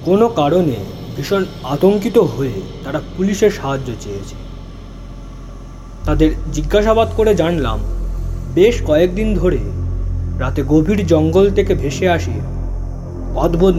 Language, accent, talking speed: Bengali, native, 100 wpm